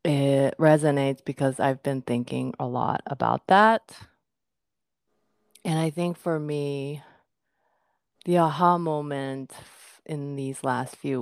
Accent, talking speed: American, 120 wpm